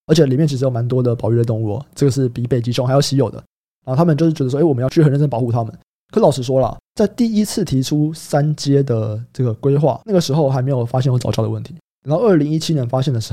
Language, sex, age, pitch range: Chinese, male, 20-39, 120-155 Hz